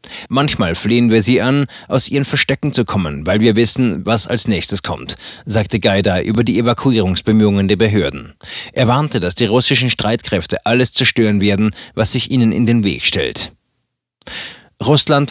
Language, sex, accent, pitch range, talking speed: German, male, German, 105-125 Hz, 160 wpm